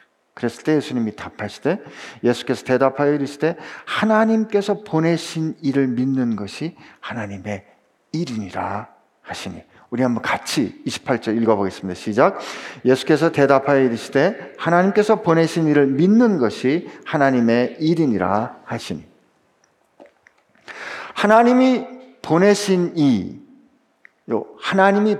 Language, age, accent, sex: Korean, 50-69, native, male